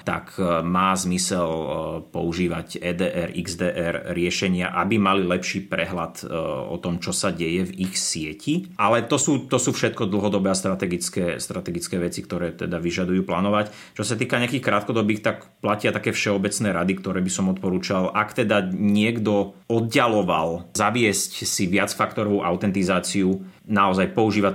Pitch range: 90-105 Hz